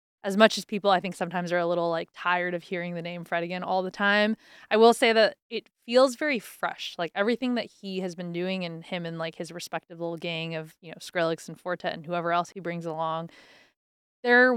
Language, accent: English, American